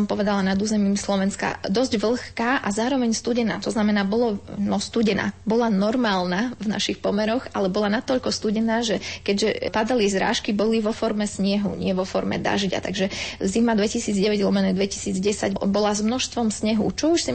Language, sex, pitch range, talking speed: Slovak, female, 195-220 Hz, 160 wpm